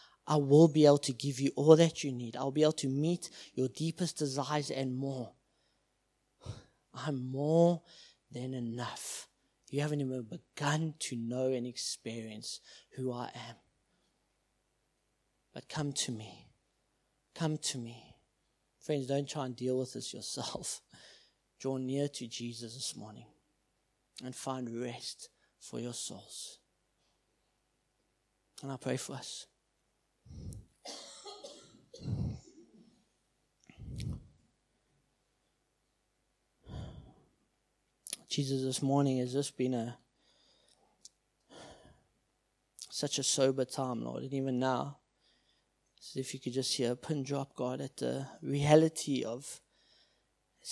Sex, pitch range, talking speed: male, 125-150 Hz, 115 wpm